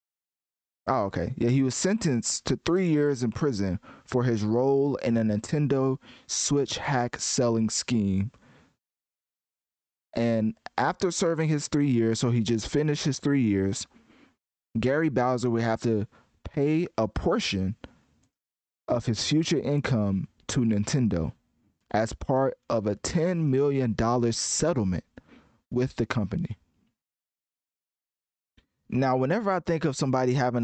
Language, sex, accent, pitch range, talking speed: English, male, American, 110-135 Hz, 125 wpm